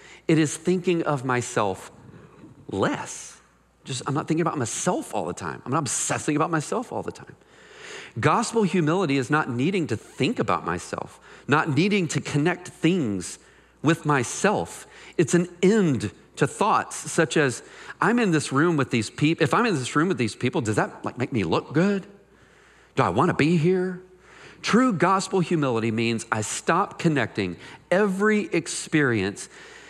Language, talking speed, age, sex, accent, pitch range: English, 165 wpm, 40-59, male, American, 110-165 Hz